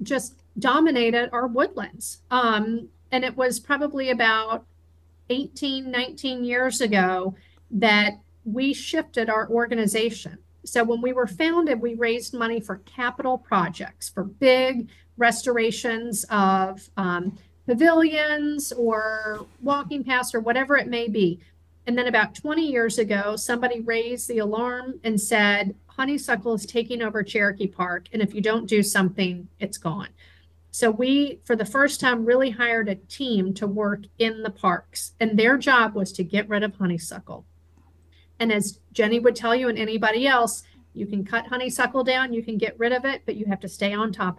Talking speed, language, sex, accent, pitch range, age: 165 wpm, English, female, American, 200-250 Hz, 50-69